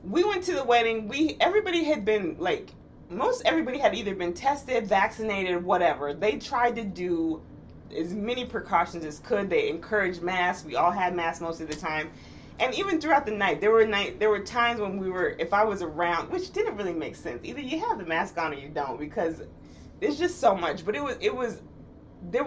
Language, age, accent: English, 30-49, American